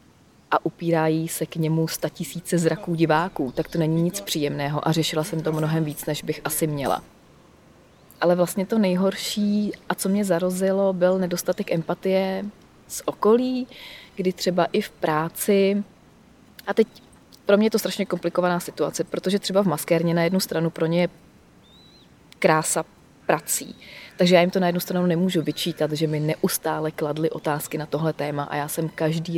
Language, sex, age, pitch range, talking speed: Czech, female, 30-49, 160-185 Hz, 170 wpm